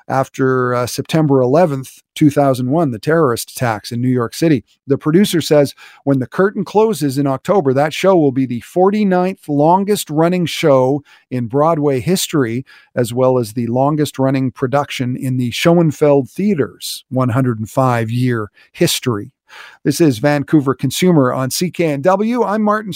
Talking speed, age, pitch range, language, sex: 140 wpm, 50-69, 130-185 Hz, English, male